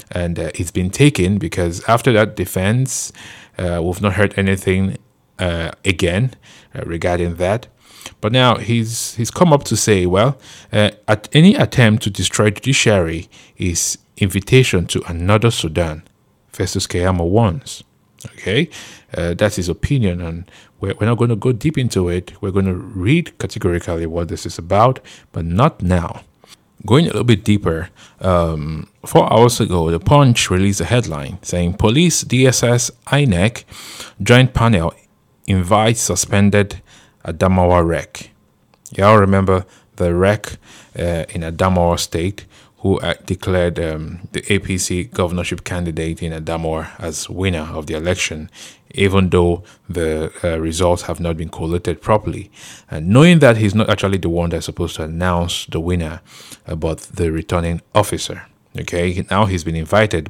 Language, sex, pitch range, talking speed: English, male, 85-110 Hz, 150 wpm